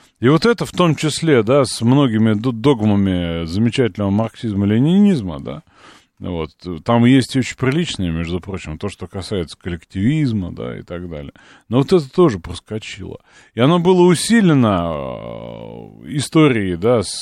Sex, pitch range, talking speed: male, 95-140 Hz, 145 wpm